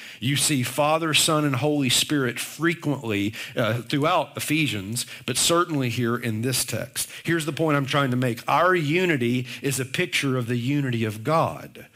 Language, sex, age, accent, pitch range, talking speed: English, male, 50-69, American, 125-155 Hz, 170 wpm